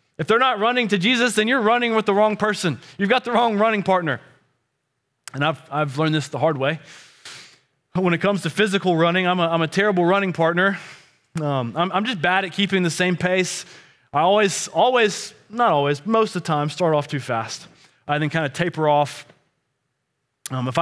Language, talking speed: English, 205 wpm